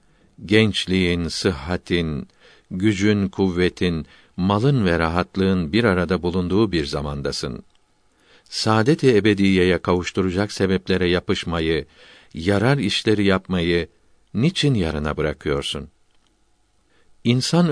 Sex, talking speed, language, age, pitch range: male, 80 wpm, Turkish, 60-79, 90-105 Hz